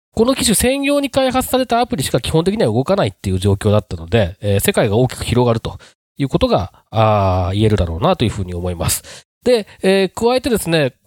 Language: Japanese